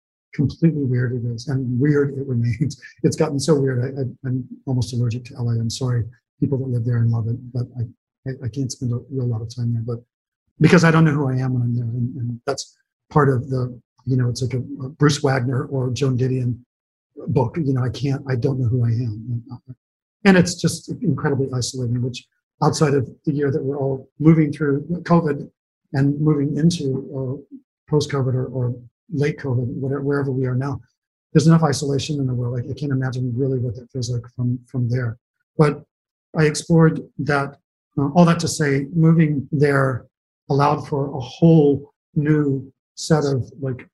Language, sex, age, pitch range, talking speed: English, male, 50-69, 125-145 Hz, 200 wpm